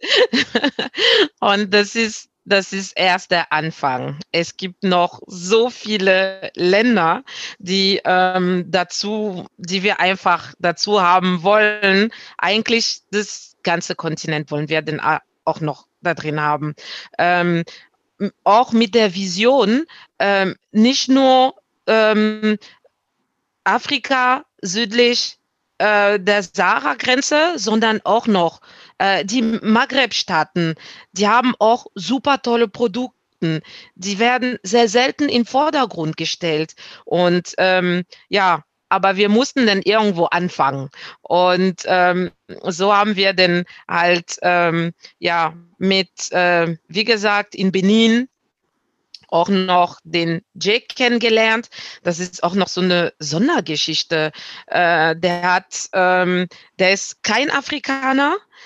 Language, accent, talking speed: German, German, 115 wpm